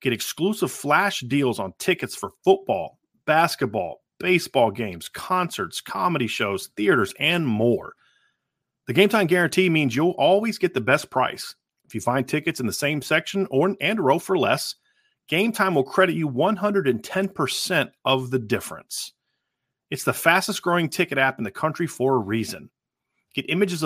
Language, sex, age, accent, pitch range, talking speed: English, male, 30-49, American, 130-190 Hz, 165 wpm